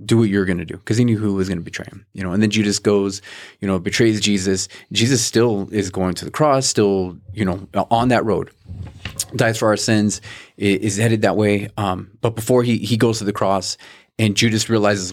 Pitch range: 95-115 Hz